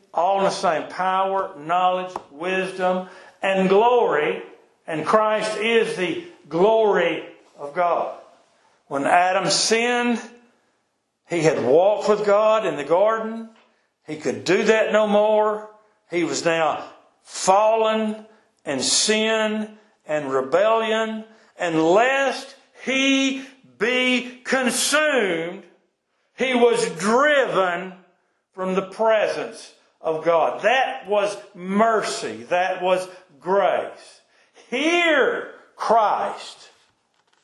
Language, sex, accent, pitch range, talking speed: English, male, American, 180-230 Hz, 100 wpm